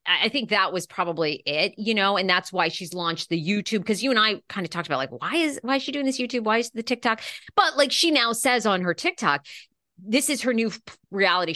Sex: female